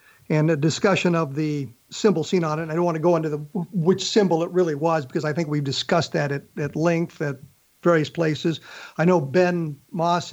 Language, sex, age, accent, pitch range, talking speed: English, male, 50-69, American, 155-195 Hz, 220 wpm